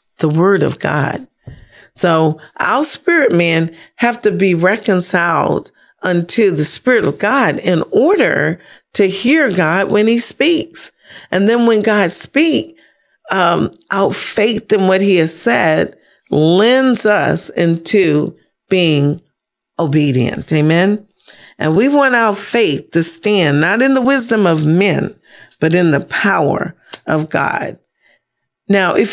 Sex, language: female, English